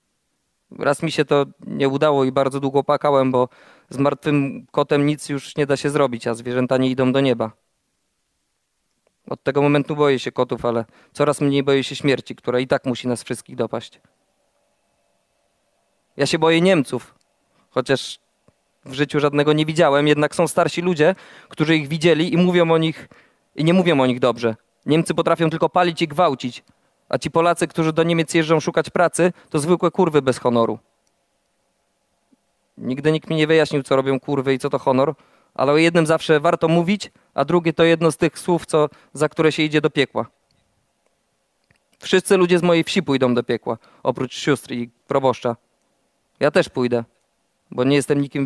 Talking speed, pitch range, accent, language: 175 wpm, 135-165 Hz, native, Polish